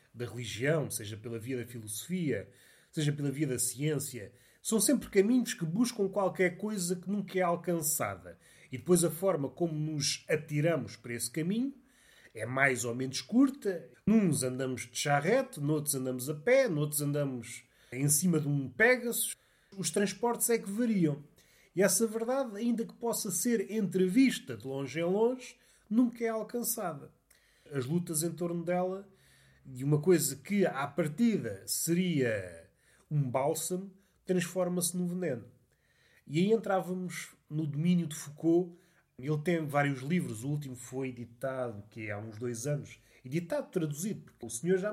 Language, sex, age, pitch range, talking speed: Portuguese, male, 30-49, 140-195 Hz, 155 wpm